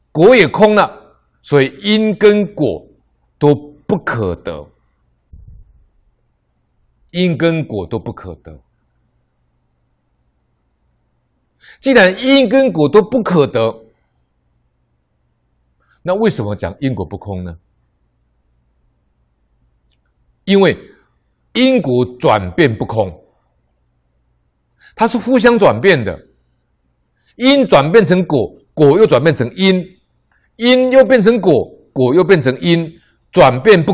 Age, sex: 60-79, male